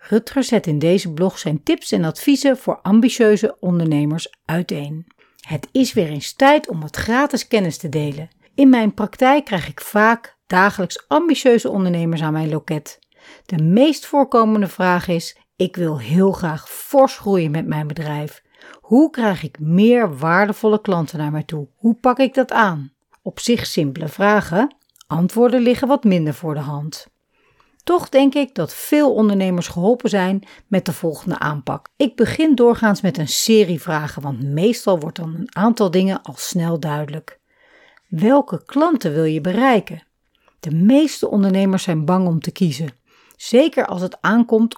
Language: Dutch